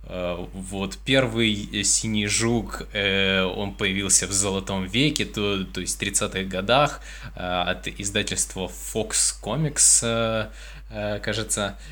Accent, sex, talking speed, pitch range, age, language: native, male, 100 wpm, 95-115 Hz, 20-39, Russian